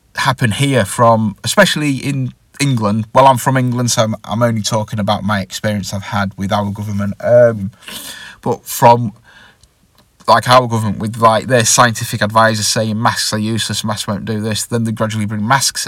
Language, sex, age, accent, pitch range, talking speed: English, male, 30-49, British, 105-120 Hz, 180 wpm